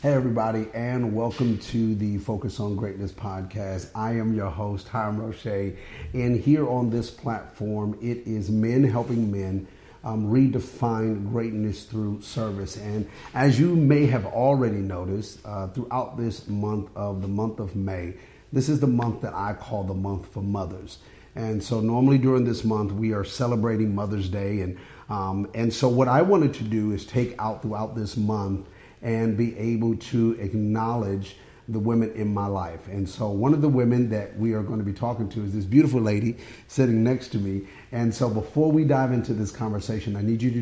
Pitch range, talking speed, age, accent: 100-120 Hz, 190 wpm, 40-59, American